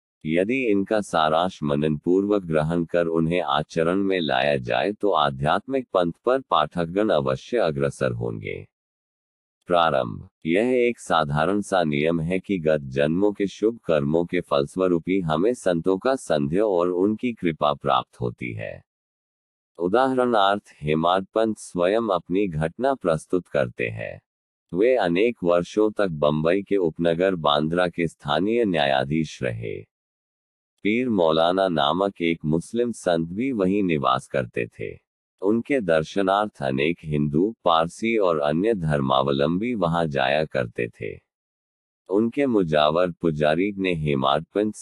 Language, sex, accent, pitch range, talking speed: Hindi, male, native, 75-100 Hz, 125 wpm